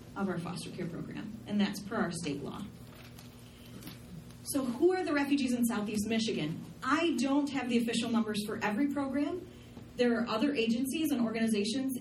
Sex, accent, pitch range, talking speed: female, American, 200-240 Hz, 170 wpm